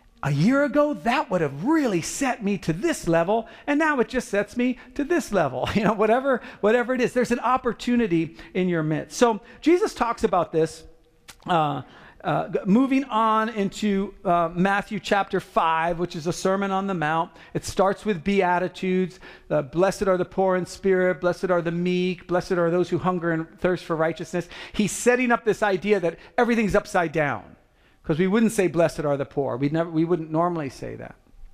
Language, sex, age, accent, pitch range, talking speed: English, male, 40-59, American, 160-215 Hz, 195 wpm